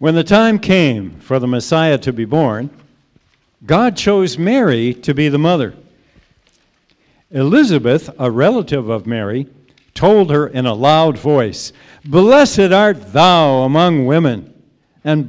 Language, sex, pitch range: English, male, 120-175 Hz